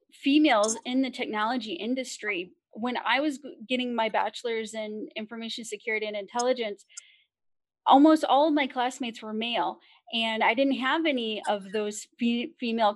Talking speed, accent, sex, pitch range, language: 150 wpm, American, female, 215-270 Hz, English